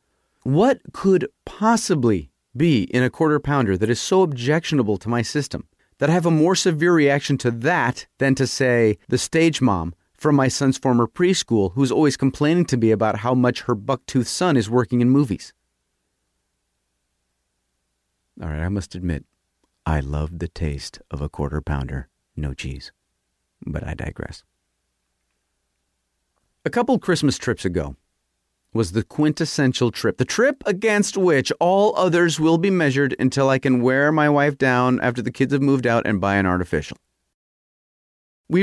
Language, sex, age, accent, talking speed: English, male, 40-59, American, 160 wpm